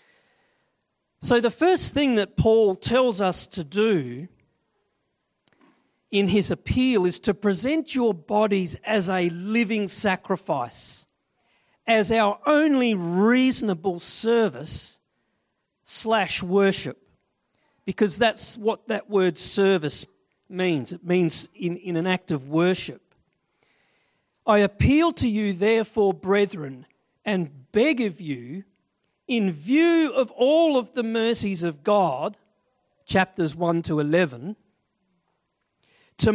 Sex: male